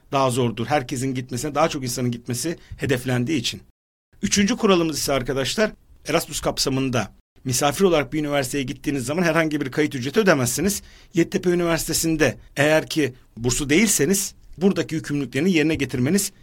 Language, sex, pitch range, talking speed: Turkish, male, 130-170 Hz, 135 wpm